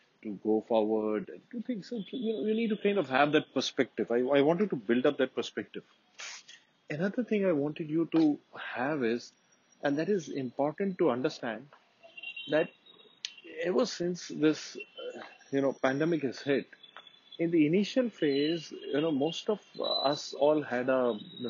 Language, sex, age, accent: English, male, 30-49, Indian